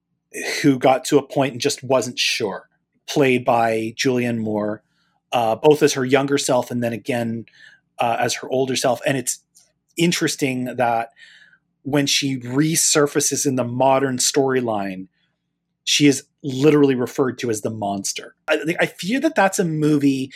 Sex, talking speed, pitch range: male, 160 wpm, 125-155 Hz